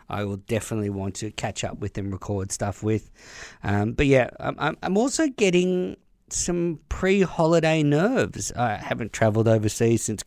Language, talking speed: English, 160 wpm